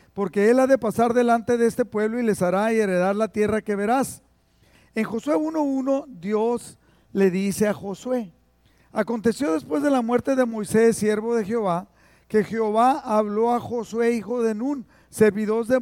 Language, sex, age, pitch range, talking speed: Spanish, male, 50-69, 185-240 Hz, 170 wpm